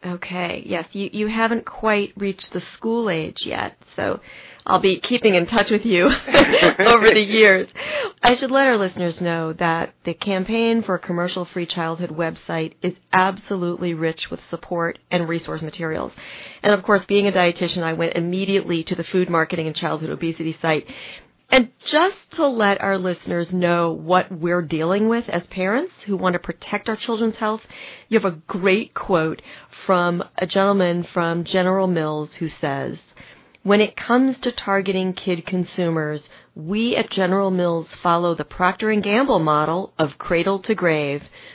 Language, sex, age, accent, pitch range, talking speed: English, female, 40-59, American, 165-200 Hz, 160 wpm